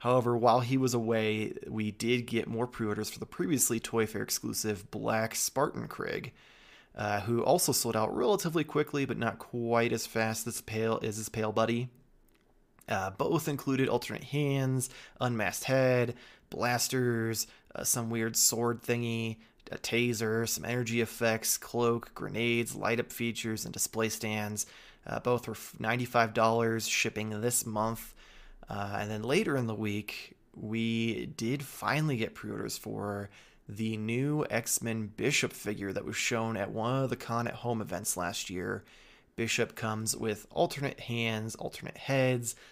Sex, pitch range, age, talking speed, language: male, 110-120 Hz, 20-39, 150 wpm, English